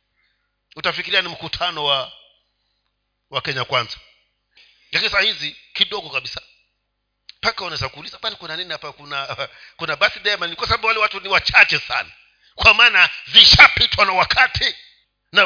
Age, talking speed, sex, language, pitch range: 50-69, 145 wpm, male, Swahili, 155-245 Hz